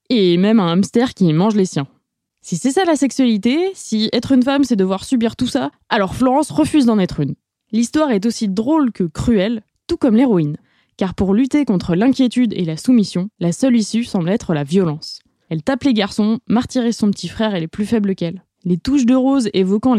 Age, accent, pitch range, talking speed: 20-39, French, 190-255 Hz, 210 wpm